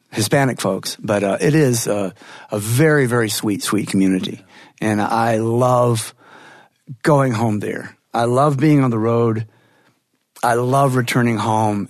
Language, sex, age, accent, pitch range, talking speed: English, male, 50-69, American, 115-170 Hz, 145 wpm